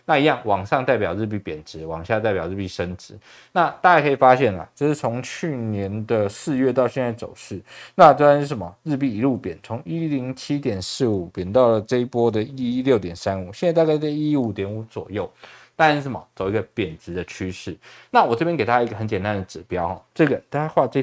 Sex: male